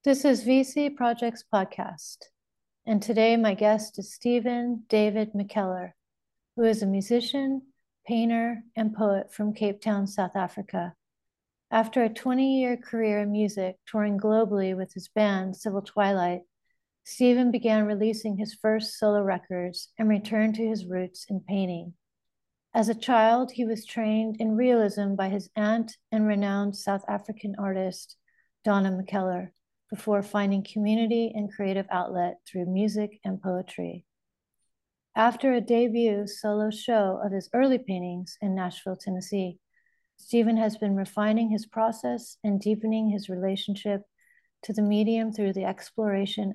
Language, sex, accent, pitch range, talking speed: English, female, American, 195-225 Hz, 140 wpm